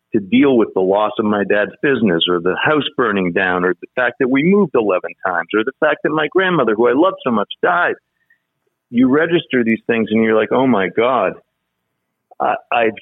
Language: English